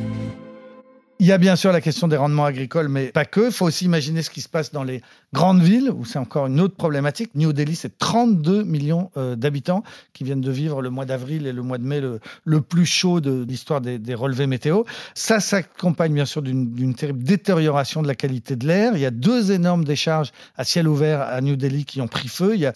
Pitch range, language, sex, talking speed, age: 135-180 Hz, French, male, 240 wpm, 50-69